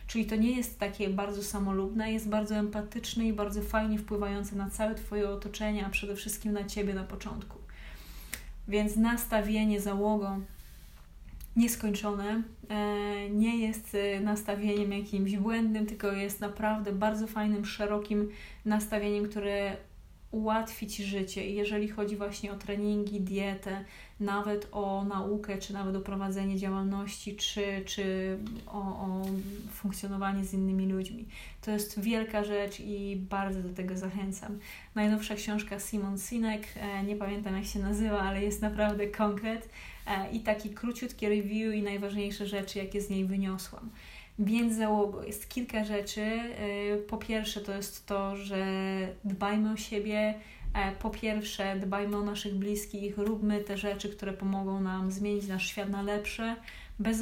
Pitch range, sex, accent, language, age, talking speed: 195-210 Hz, female, native, Polish, 30-49, 135 wpm